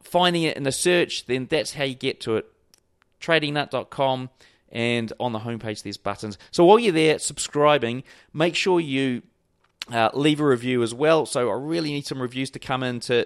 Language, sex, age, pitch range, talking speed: English, male, 30-49, 115-155 Hz, 195 wpm